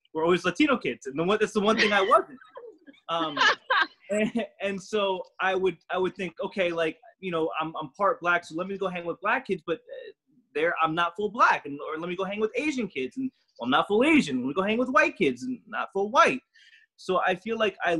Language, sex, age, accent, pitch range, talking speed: English, male, 20-39, American, 150-205 Hz, 250 wpm